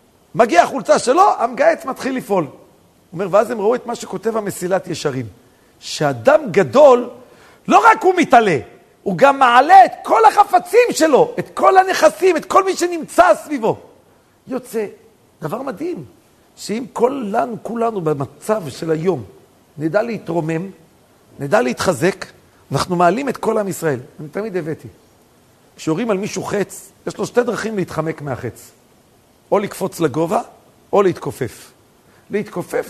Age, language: 50-69, Hebrew